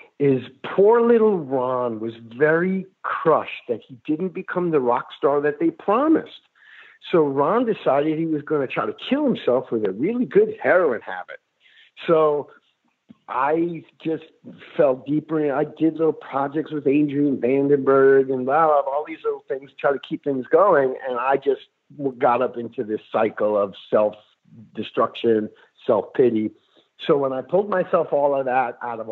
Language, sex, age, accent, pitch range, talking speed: English, male, 50-69, American, 120-185 Hz, 160 wpm